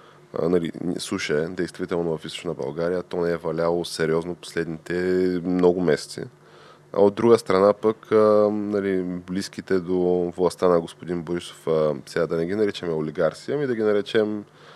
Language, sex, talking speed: Bulgarian, male, 150 wpm